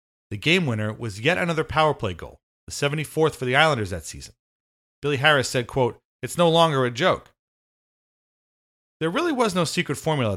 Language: English